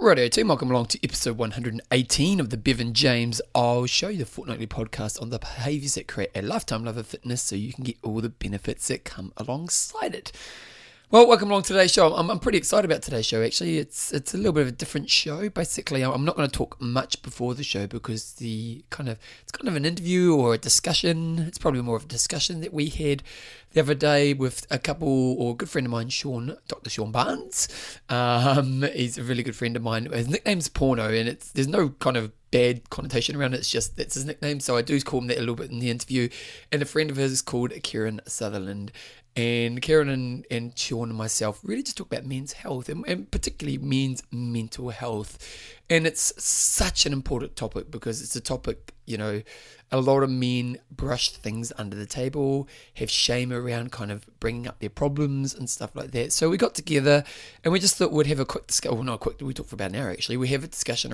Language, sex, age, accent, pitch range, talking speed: English, male, 20-39, British, 115-145 Hz, 230 wpm